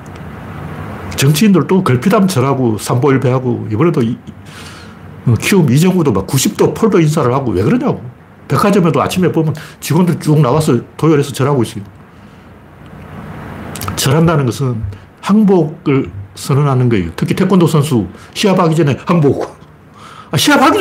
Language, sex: Korean, male